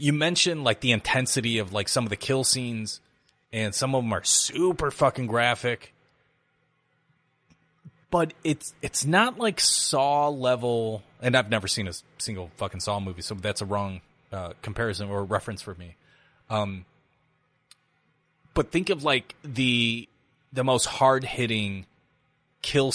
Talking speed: 150 wpm